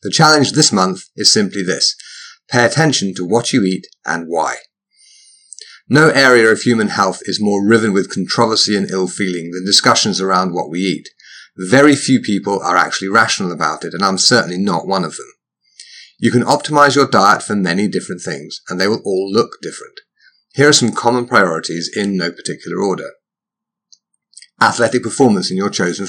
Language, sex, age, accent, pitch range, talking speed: English, male, 30-49, British, 95-155 Hz, 175 wpm